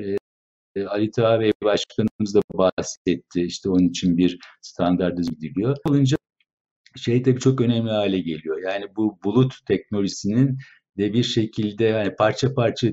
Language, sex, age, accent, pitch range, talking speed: Turkish, male, 60-79, native, 95-120 Hz, 135 wpm